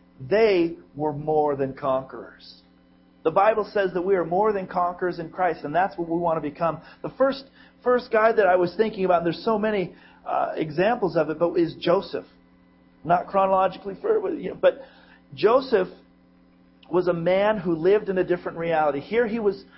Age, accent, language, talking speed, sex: 40-59, American, English, 190 wpm, male